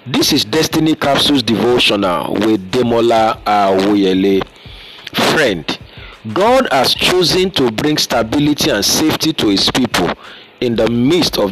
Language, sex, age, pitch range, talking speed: English, male, 50-69, 110-150 Hz, 130 wpm